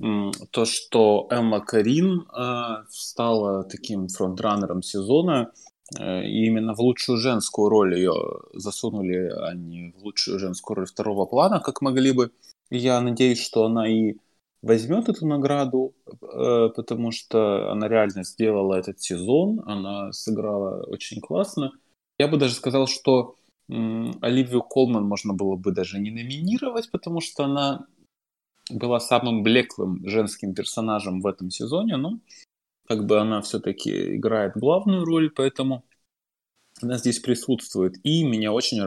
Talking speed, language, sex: 135 wpm, Ukrainian, male